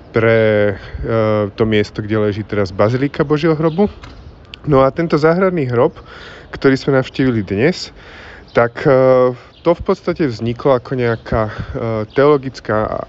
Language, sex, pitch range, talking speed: Slovak, male, 105-130 Hz, 135 wpm